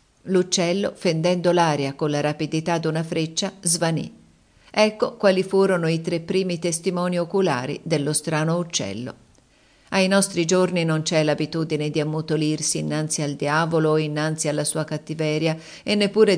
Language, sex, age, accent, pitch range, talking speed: Italian, female, 50-69, native, 155-185 Hz, 140 wpm